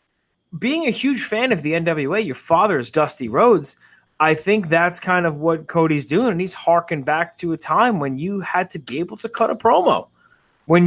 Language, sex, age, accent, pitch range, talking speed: English, male, 20-39, American, 150-200 Hz, 210 wpm